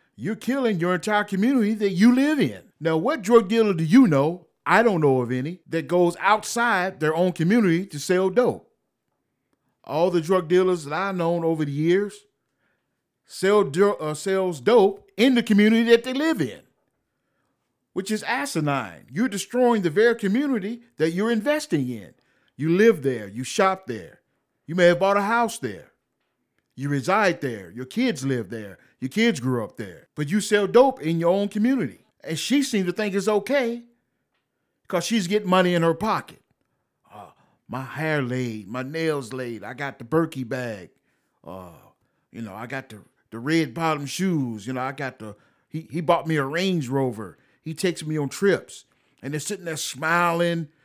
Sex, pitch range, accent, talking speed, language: male, 145-205 Hz, American, 180 wpm, English